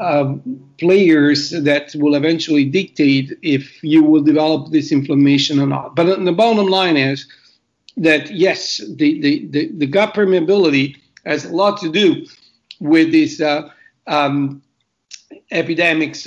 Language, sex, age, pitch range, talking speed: English, male, 60-79, 150-205 Hz, 130 wpm